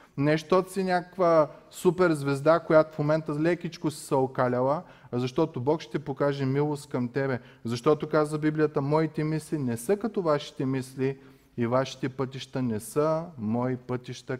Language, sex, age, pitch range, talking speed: Bulgarian, male, 30-49, 130-175 Hz, 150 wpm